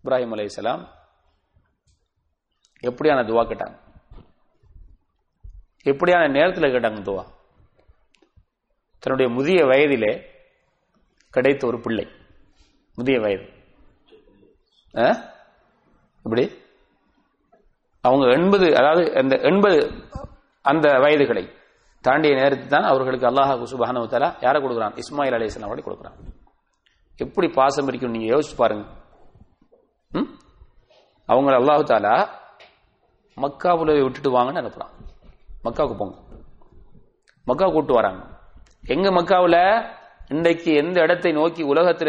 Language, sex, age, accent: English, male, 30-49, Indian